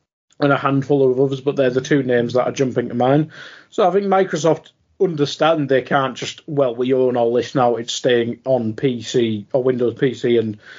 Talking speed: 205 wpm